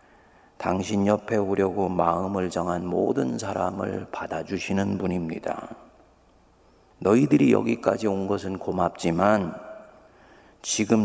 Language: Korean